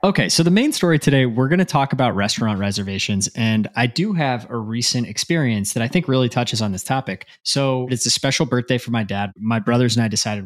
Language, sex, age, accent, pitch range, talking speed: English, male, 20-39, American, 105-130 Hz, 235 wpm